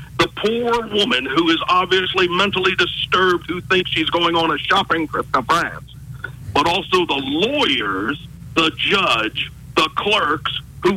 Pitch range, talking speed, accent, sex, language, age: 130-180 Hz, 150 wpm, American, male, English, 50-69